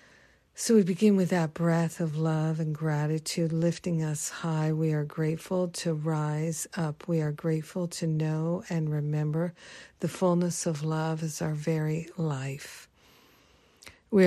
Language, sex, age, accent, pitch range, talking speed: English, female, 50-69, American, 160-180 Hz, 145 wpm